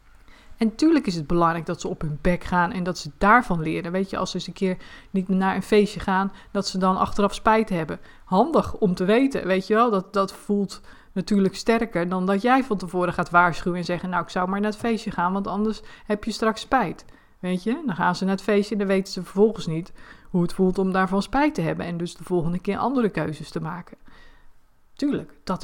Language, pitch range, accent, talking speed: Dutch, 175-205 Hz, Dutch, 240 wpm